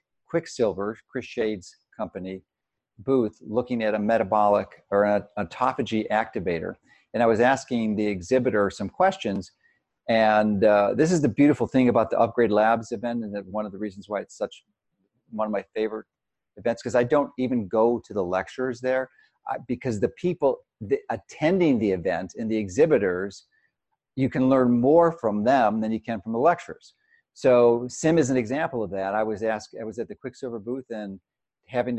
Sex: male